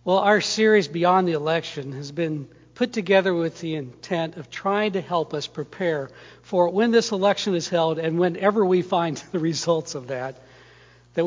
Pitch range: 150-205 Hz